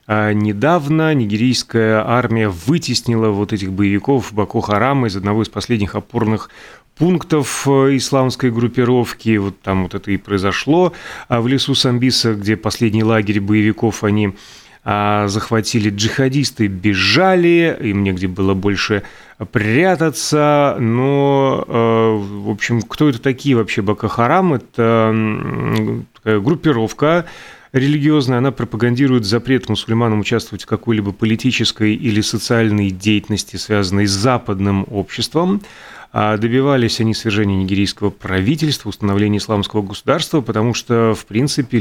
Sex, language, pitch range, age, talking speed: male, Russian, 105-130 Hz, 30-49, 115 wpm